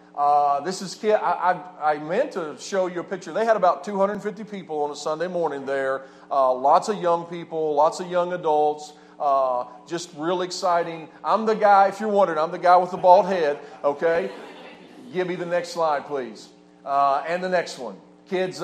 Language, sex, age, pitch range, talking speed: English, male, 40-59, 155-190 Hz, 200 wpm